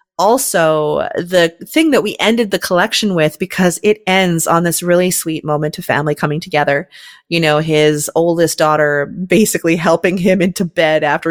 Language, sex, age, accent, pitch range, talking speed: English, female, 30-49, American, 155-190 Hz, 170 wpm